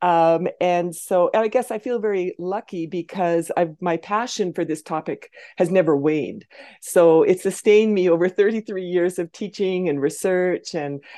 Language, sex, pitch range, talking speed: English, female, 155-185 Hz, 160 wpm